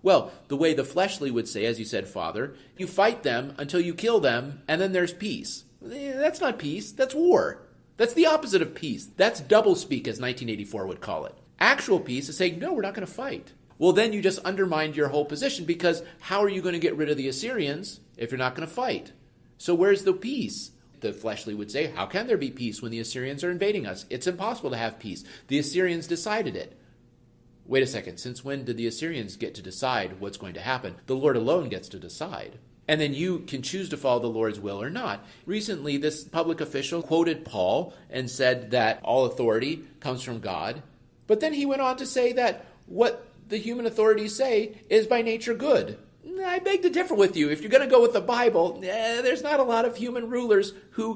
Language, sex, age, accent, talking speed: English, male, 40-59, American, 220 wpm